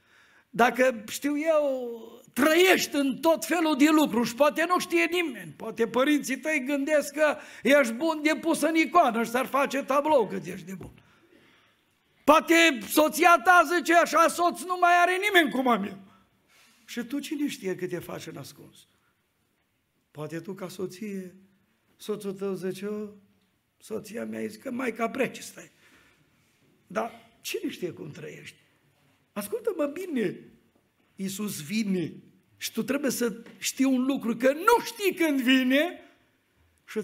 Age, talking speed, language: 50-69, 145 wpm, Romanian